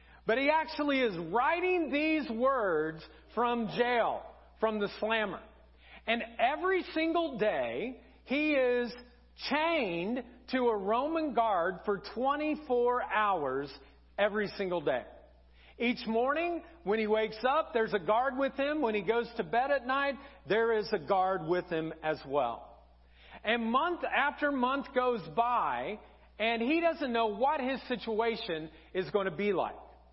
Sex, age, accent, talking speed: male, 40-59, American, 145 wpm